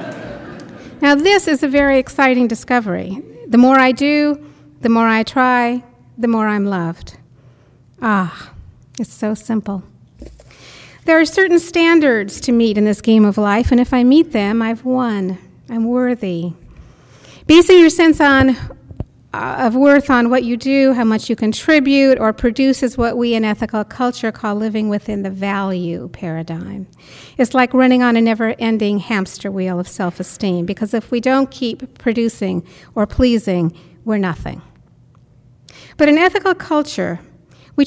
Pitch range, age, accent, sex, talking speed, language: 185-250 Hz, 50-69, American, female, 150 wpm, English